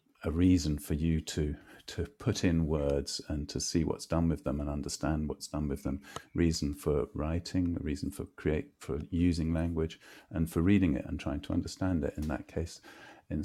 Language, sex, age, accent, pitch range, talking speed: English, male, 40-59, British, 80-95 Hz, 195 wpm